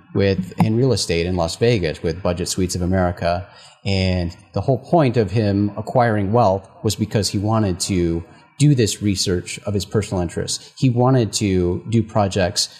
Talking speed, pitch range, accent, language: 175 wpm, 95-125 Hz, American, English